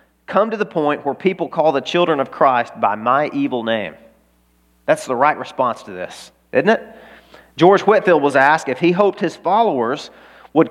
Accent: American